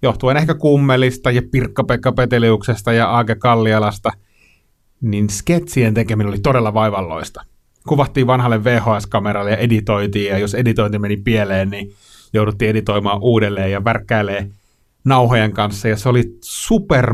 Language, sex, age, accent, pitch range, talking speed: Finnish, male, 30-49, native, 100-125 Hz, 125 wpm